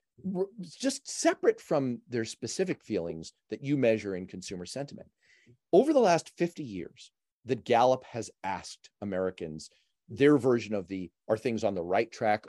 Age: 40-59